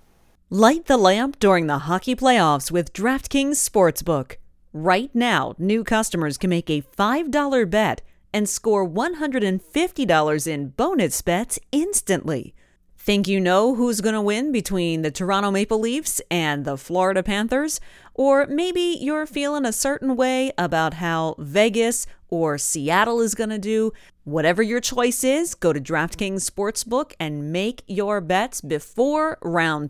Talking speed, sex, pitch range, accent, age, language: 145 wpm, female, 170-245 Hz, American, 30-49, English